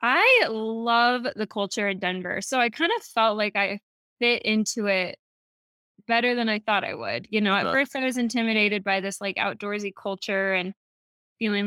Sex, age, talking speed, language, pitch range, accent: female, 20-39, 185 wpm, English, 200-255 Hz, American